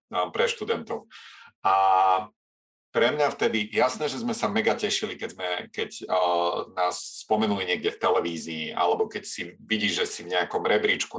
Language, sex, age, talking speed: Slovak, male, 40-59, 160 wpm